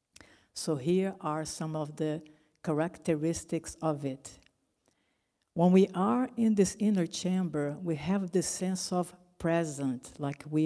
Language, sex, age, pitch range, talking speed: English, female, 60-79, 155-185 Hz, 135 wpm